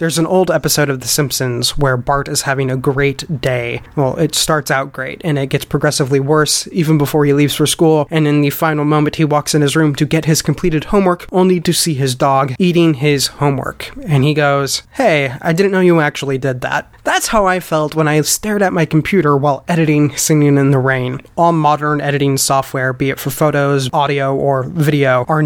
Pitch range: 140-165 Hz